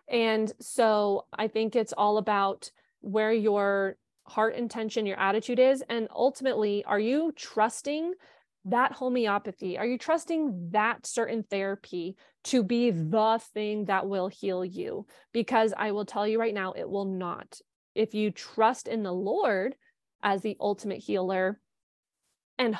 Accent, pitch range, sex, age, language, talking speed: American, 195-230 Hz, female, 20-39, English, 145 wpm